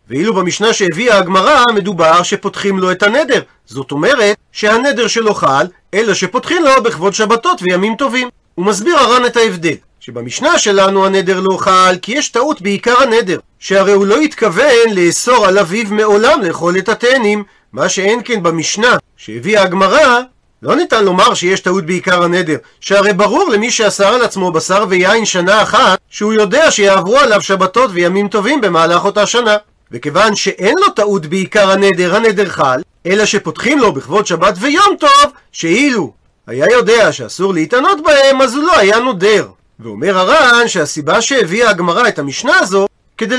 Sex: male